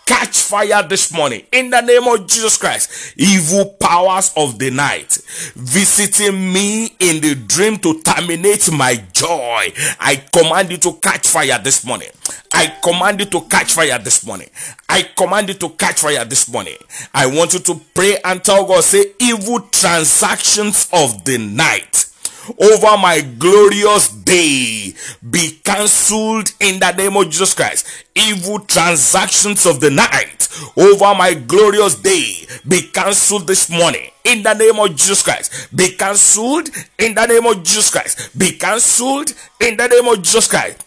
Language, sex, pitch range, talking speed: English, male, 170-210 Hz, 160 wpm